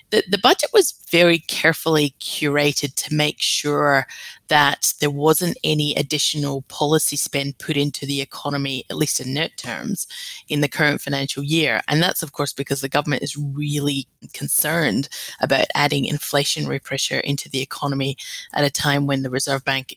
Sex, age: female, 20-39